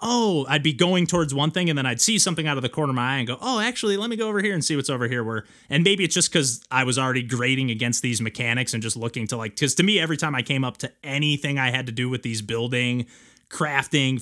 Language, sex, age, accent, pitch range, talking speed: English, male, 20-39, American, 125-155 Hz, 285 wpm